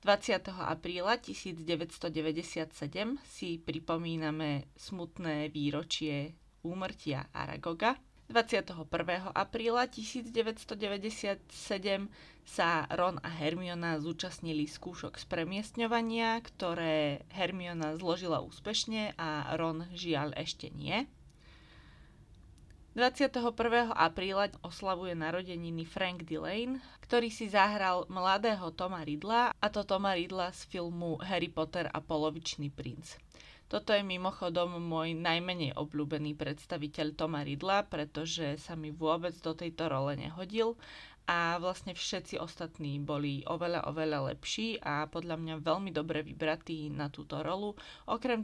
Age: 20-39